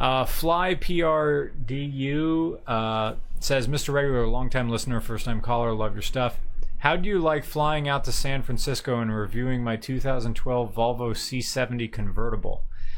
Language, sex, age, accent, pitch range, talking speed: English, male, 30-49, American, 110-140 Hz, 135 wpm